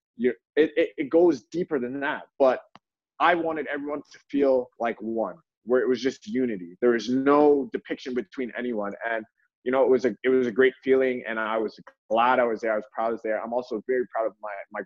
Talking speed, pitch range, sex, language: 230 wpm, 115-140 Hz, male, English